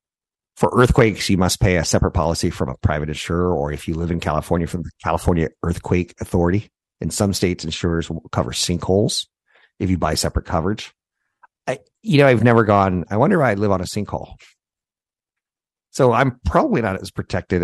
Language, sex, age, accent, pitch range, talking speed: English, male, 50-69, American, 80-100 Hz, 185 wpm